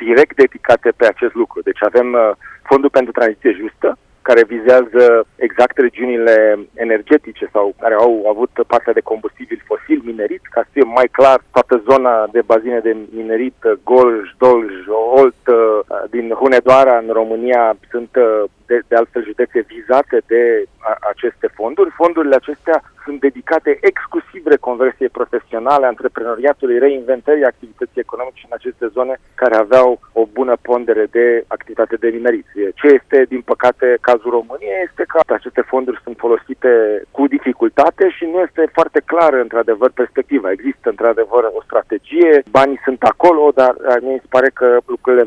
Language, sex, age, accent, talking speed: Romanian, male, 40-59, native, 150 wpm